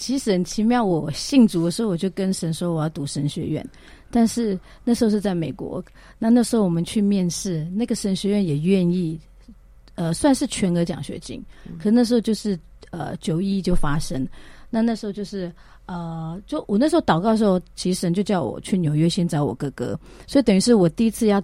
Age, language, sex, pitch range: 40-59, Chinese, female, 165-220 Hz